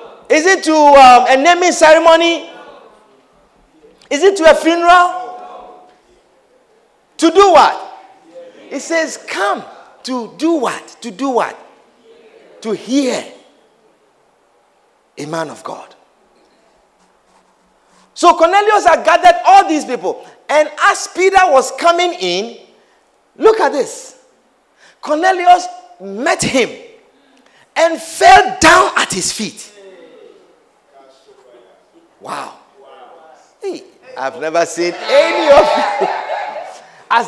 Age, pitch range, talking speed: 50-69, 245-370 Hz, 100 wpm